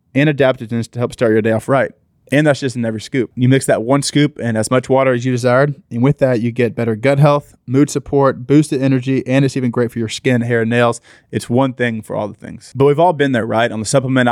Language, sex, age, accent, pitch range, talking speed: English, male, 20-39, American, 115-135 Hz, 275 wpm